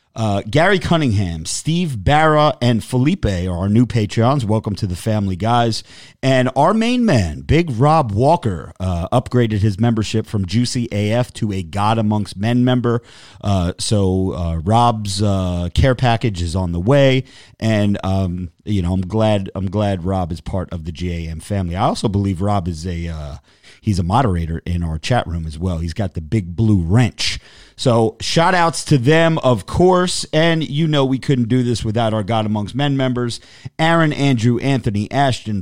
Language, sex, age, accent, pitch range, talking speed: English, male, 40-59, American, 95-140 Hz, 180 wpm